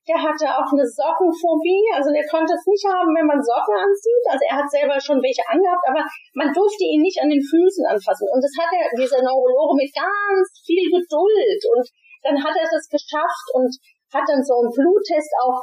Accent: German